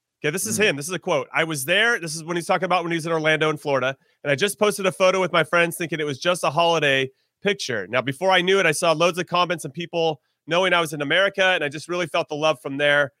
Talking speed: 295 wpm